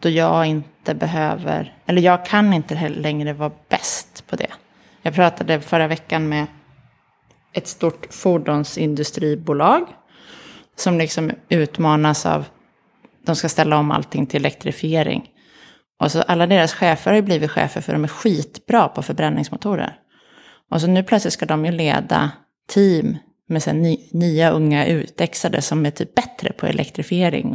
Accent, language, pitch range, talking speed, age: native, Swedish, 155-185 Hz, 145 wpm, 20-39